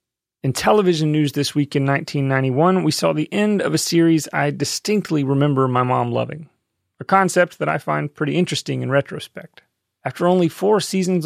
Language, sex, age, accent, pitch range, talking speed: English, male, 30-49, American, 130-160 Hz, 175 wpm